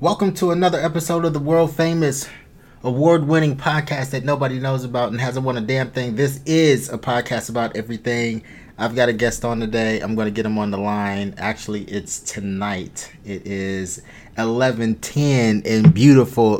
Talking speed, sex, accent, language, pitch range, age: 175 wpm, male, American, English, 110-135 Hz, 20-39